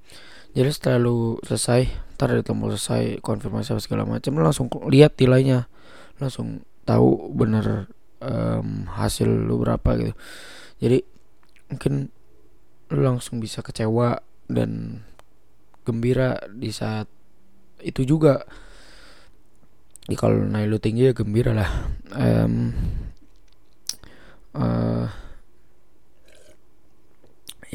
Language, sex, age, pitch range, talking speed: English, male, 20-39, 75-120 Hz, 95 wpm